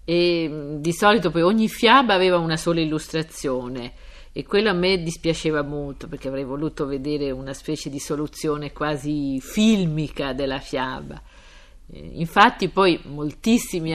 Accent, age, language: native, 50-69, Italian